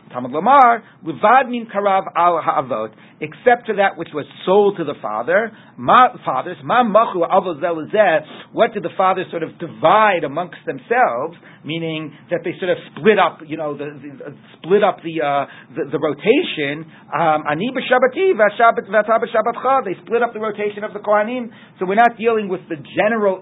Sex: male